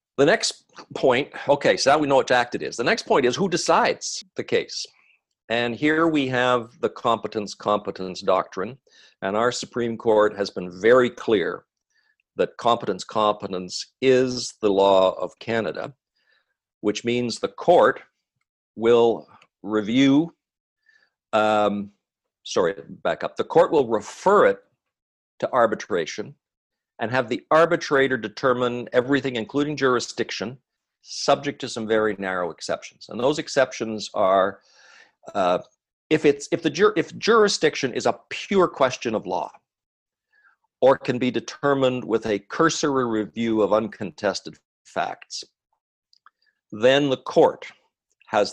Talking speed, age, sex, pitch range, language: 135 wpm, 50-69, male, 110-175 Hz, English